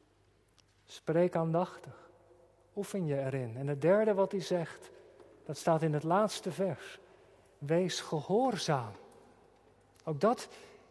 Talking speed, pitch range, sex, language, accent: 115 wpm, 160-195 Hz, male, Dutch, Dutch